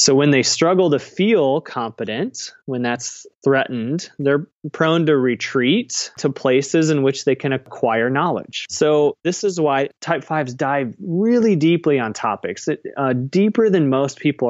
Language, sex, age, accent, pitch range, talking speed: English, male, 30-49, American, 125-155 Hz, 155 wpm